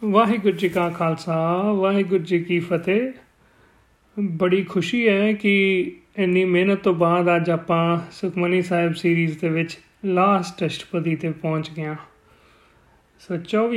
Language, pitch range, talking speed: Punjabi, 170-210 Hz, 130 wpm